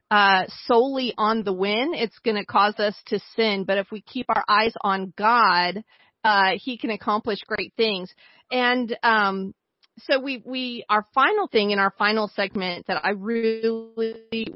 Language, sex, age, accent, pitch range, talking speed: English, female, 40-59, American, 195-230 Hz, 165 wpm